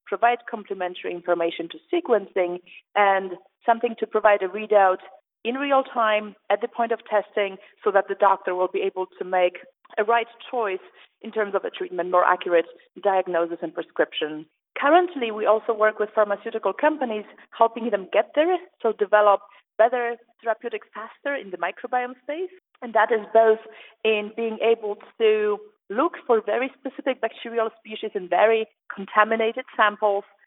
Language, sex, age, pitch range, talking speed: English, female, 40-59, 195-235 Hz, 155 wpm